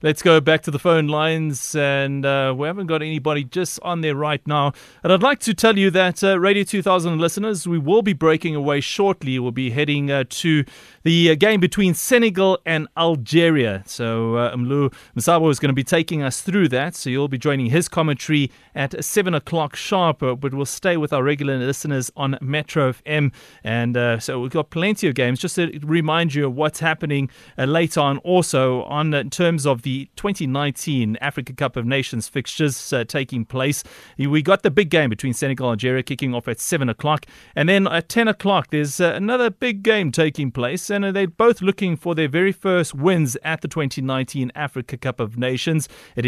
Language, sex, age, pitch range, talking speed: English, male, 30-49, 135-170 Hz, 205 wpm